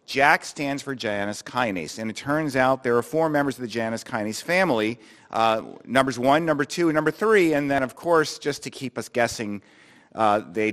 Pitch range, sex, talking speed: 110-145 Hz, male, 205 wpm